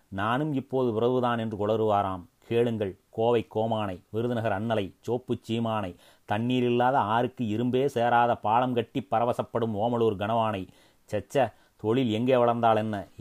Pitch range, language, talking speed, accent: 105-120 Hz, Tamil, 125 wpm, native